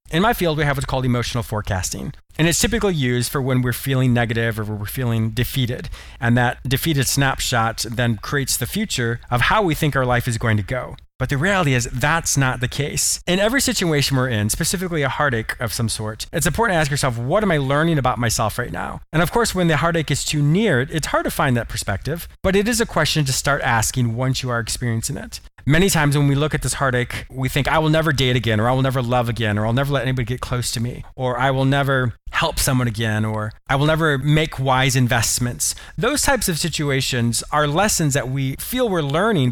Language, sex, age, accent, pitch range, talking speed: English, male, 30-49, American, 120-155 Hz, 235 wpm